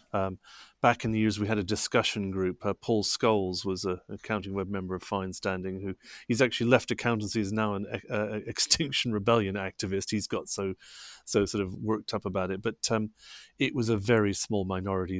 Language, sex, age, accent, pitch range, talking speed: English, male, 30-49, British, 100-125 Hz, 205 wpm